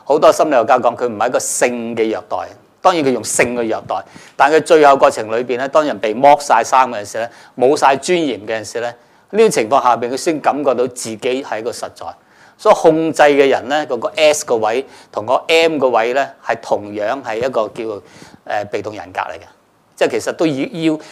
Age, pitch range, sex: 50-69, 115-145 Hz, male